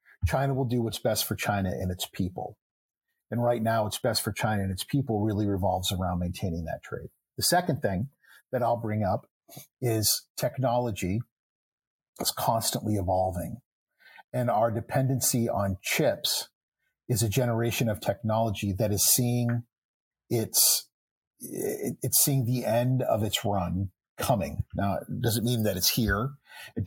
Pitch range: 100-125 Hz